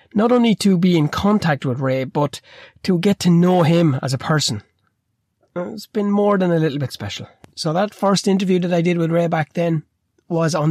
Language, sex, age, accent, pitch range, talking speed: English, male, 30-49, Irish, 120-170 Hz, 215 wpm